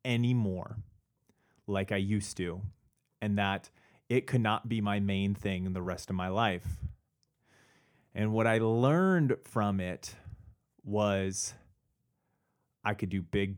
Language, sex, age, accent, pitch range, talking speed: English, male, 30-49, American, 100-125 Hz, 135 wpm